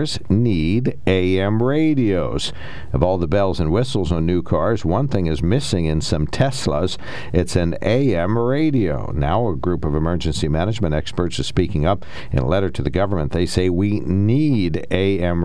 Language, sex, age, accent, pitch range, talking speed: English, male, 50-69, American, 80-100 Hz, 170 wpm